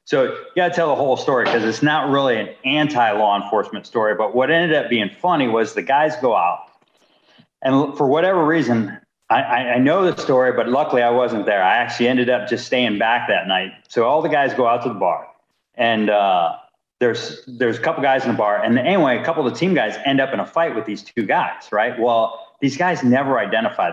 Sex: male